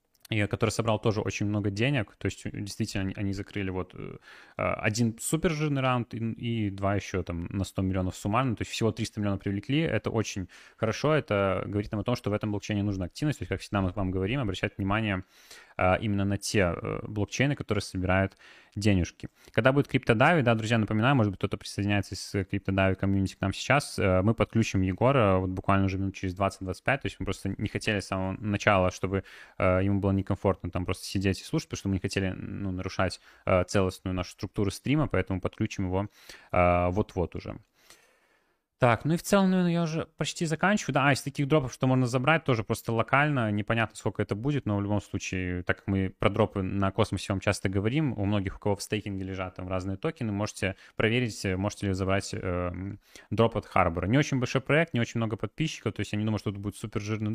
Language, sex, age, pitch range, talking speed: Russian, male, 20-39, 95-115 Hz, 205 wpm